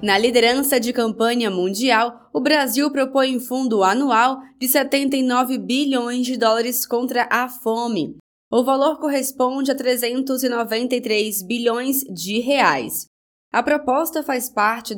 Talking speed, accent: 125 wpm, Brazilian